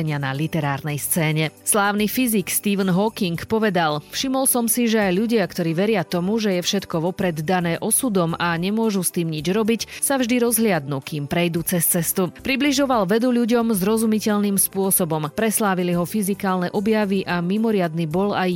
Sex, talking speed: female, 155 wpm